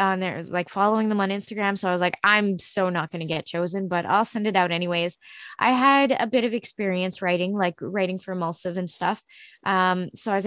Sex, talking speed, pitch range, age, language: female, 240 wpm, 180-210 Hz, 20-39, English